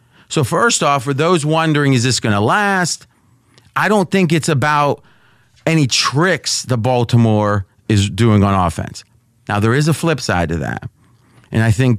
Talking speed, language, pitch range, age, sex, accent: 175 wpm, English, 120-150 Hz, 30-49, male, American